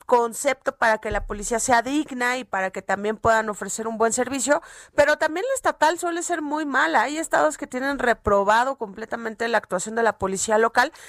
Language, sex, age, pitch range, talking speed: Spanish, female, 40-59, 220-285 Hz, 195 wpm